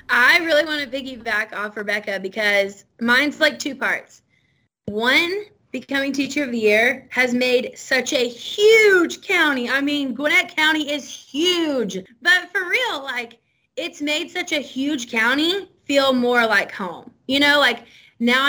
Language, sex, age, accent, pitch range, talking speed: English, female, 20-39, American, 245-315 Hz, 155 wpm